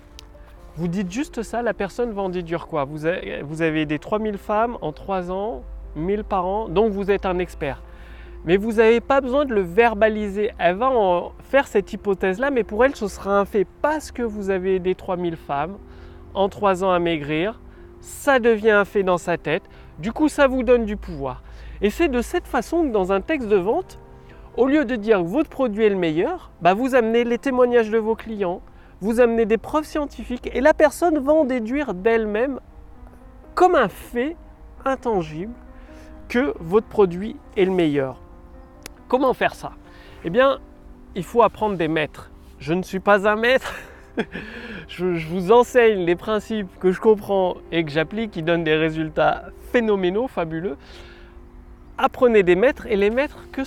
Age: 30-49